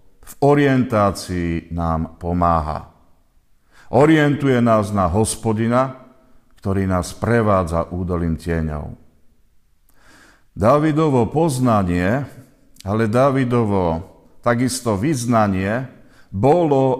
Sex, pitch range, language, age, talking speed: male, 90-125 Hz, Slovak, 50-69, 70 wpm